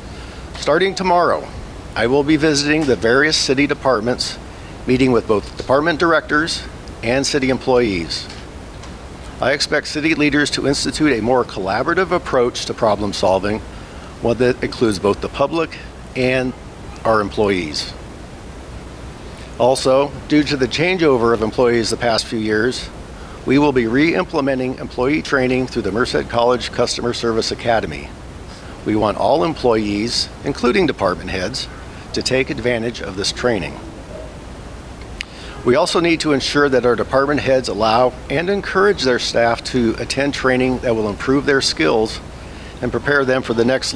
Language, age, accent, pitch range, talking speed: English, 50-69, American, 110-140 Hz, 145 wpm